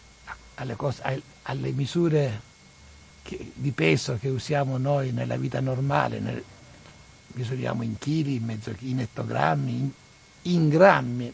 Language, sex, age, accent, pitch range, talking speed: Italian, male, 60-79, native, 115-160 Hz, 125 wpm